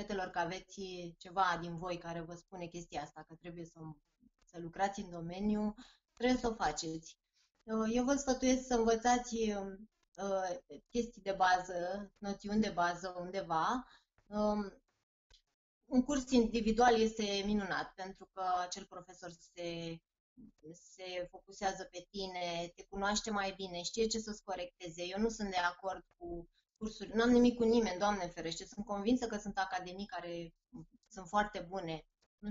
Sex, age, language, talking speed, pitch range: female, 20-39, Romanian, 145 wpm, 180-230 Hz